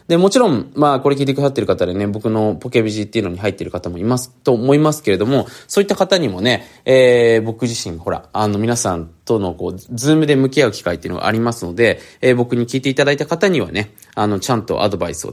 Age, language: 20-39, Japanese